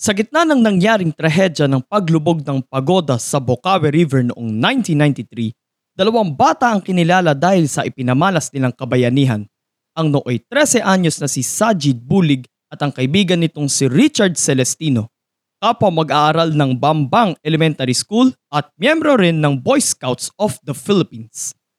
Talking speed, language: 145 wpm, English